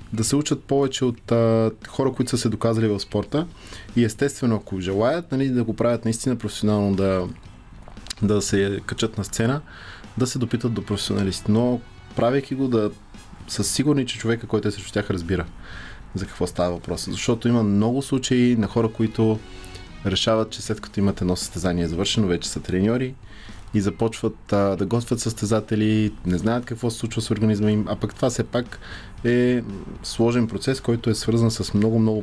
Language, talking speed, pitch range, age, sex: Bulgarian, 180 wpm, 100-120 Hz, 20-39, male